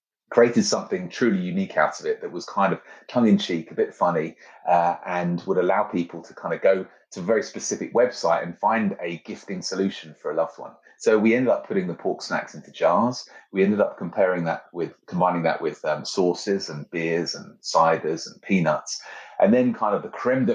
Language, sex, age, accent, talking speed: English, male, 30-49, British, 215 wpm